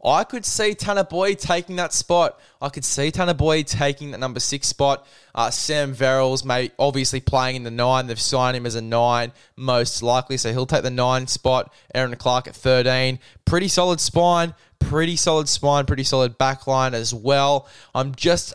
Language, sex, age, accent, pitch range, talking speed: English, male, 10-29, Australian, 120-140 Hz, 190 wpm